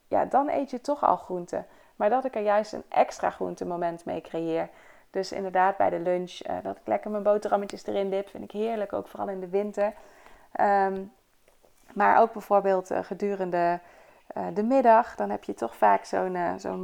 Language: Dutch